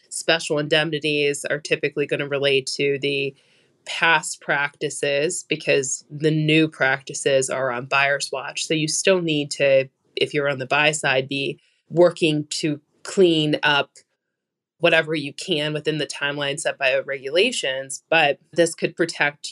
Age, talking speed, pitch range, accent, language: 20-39, 150 wpm, 140-160 Hz, American, English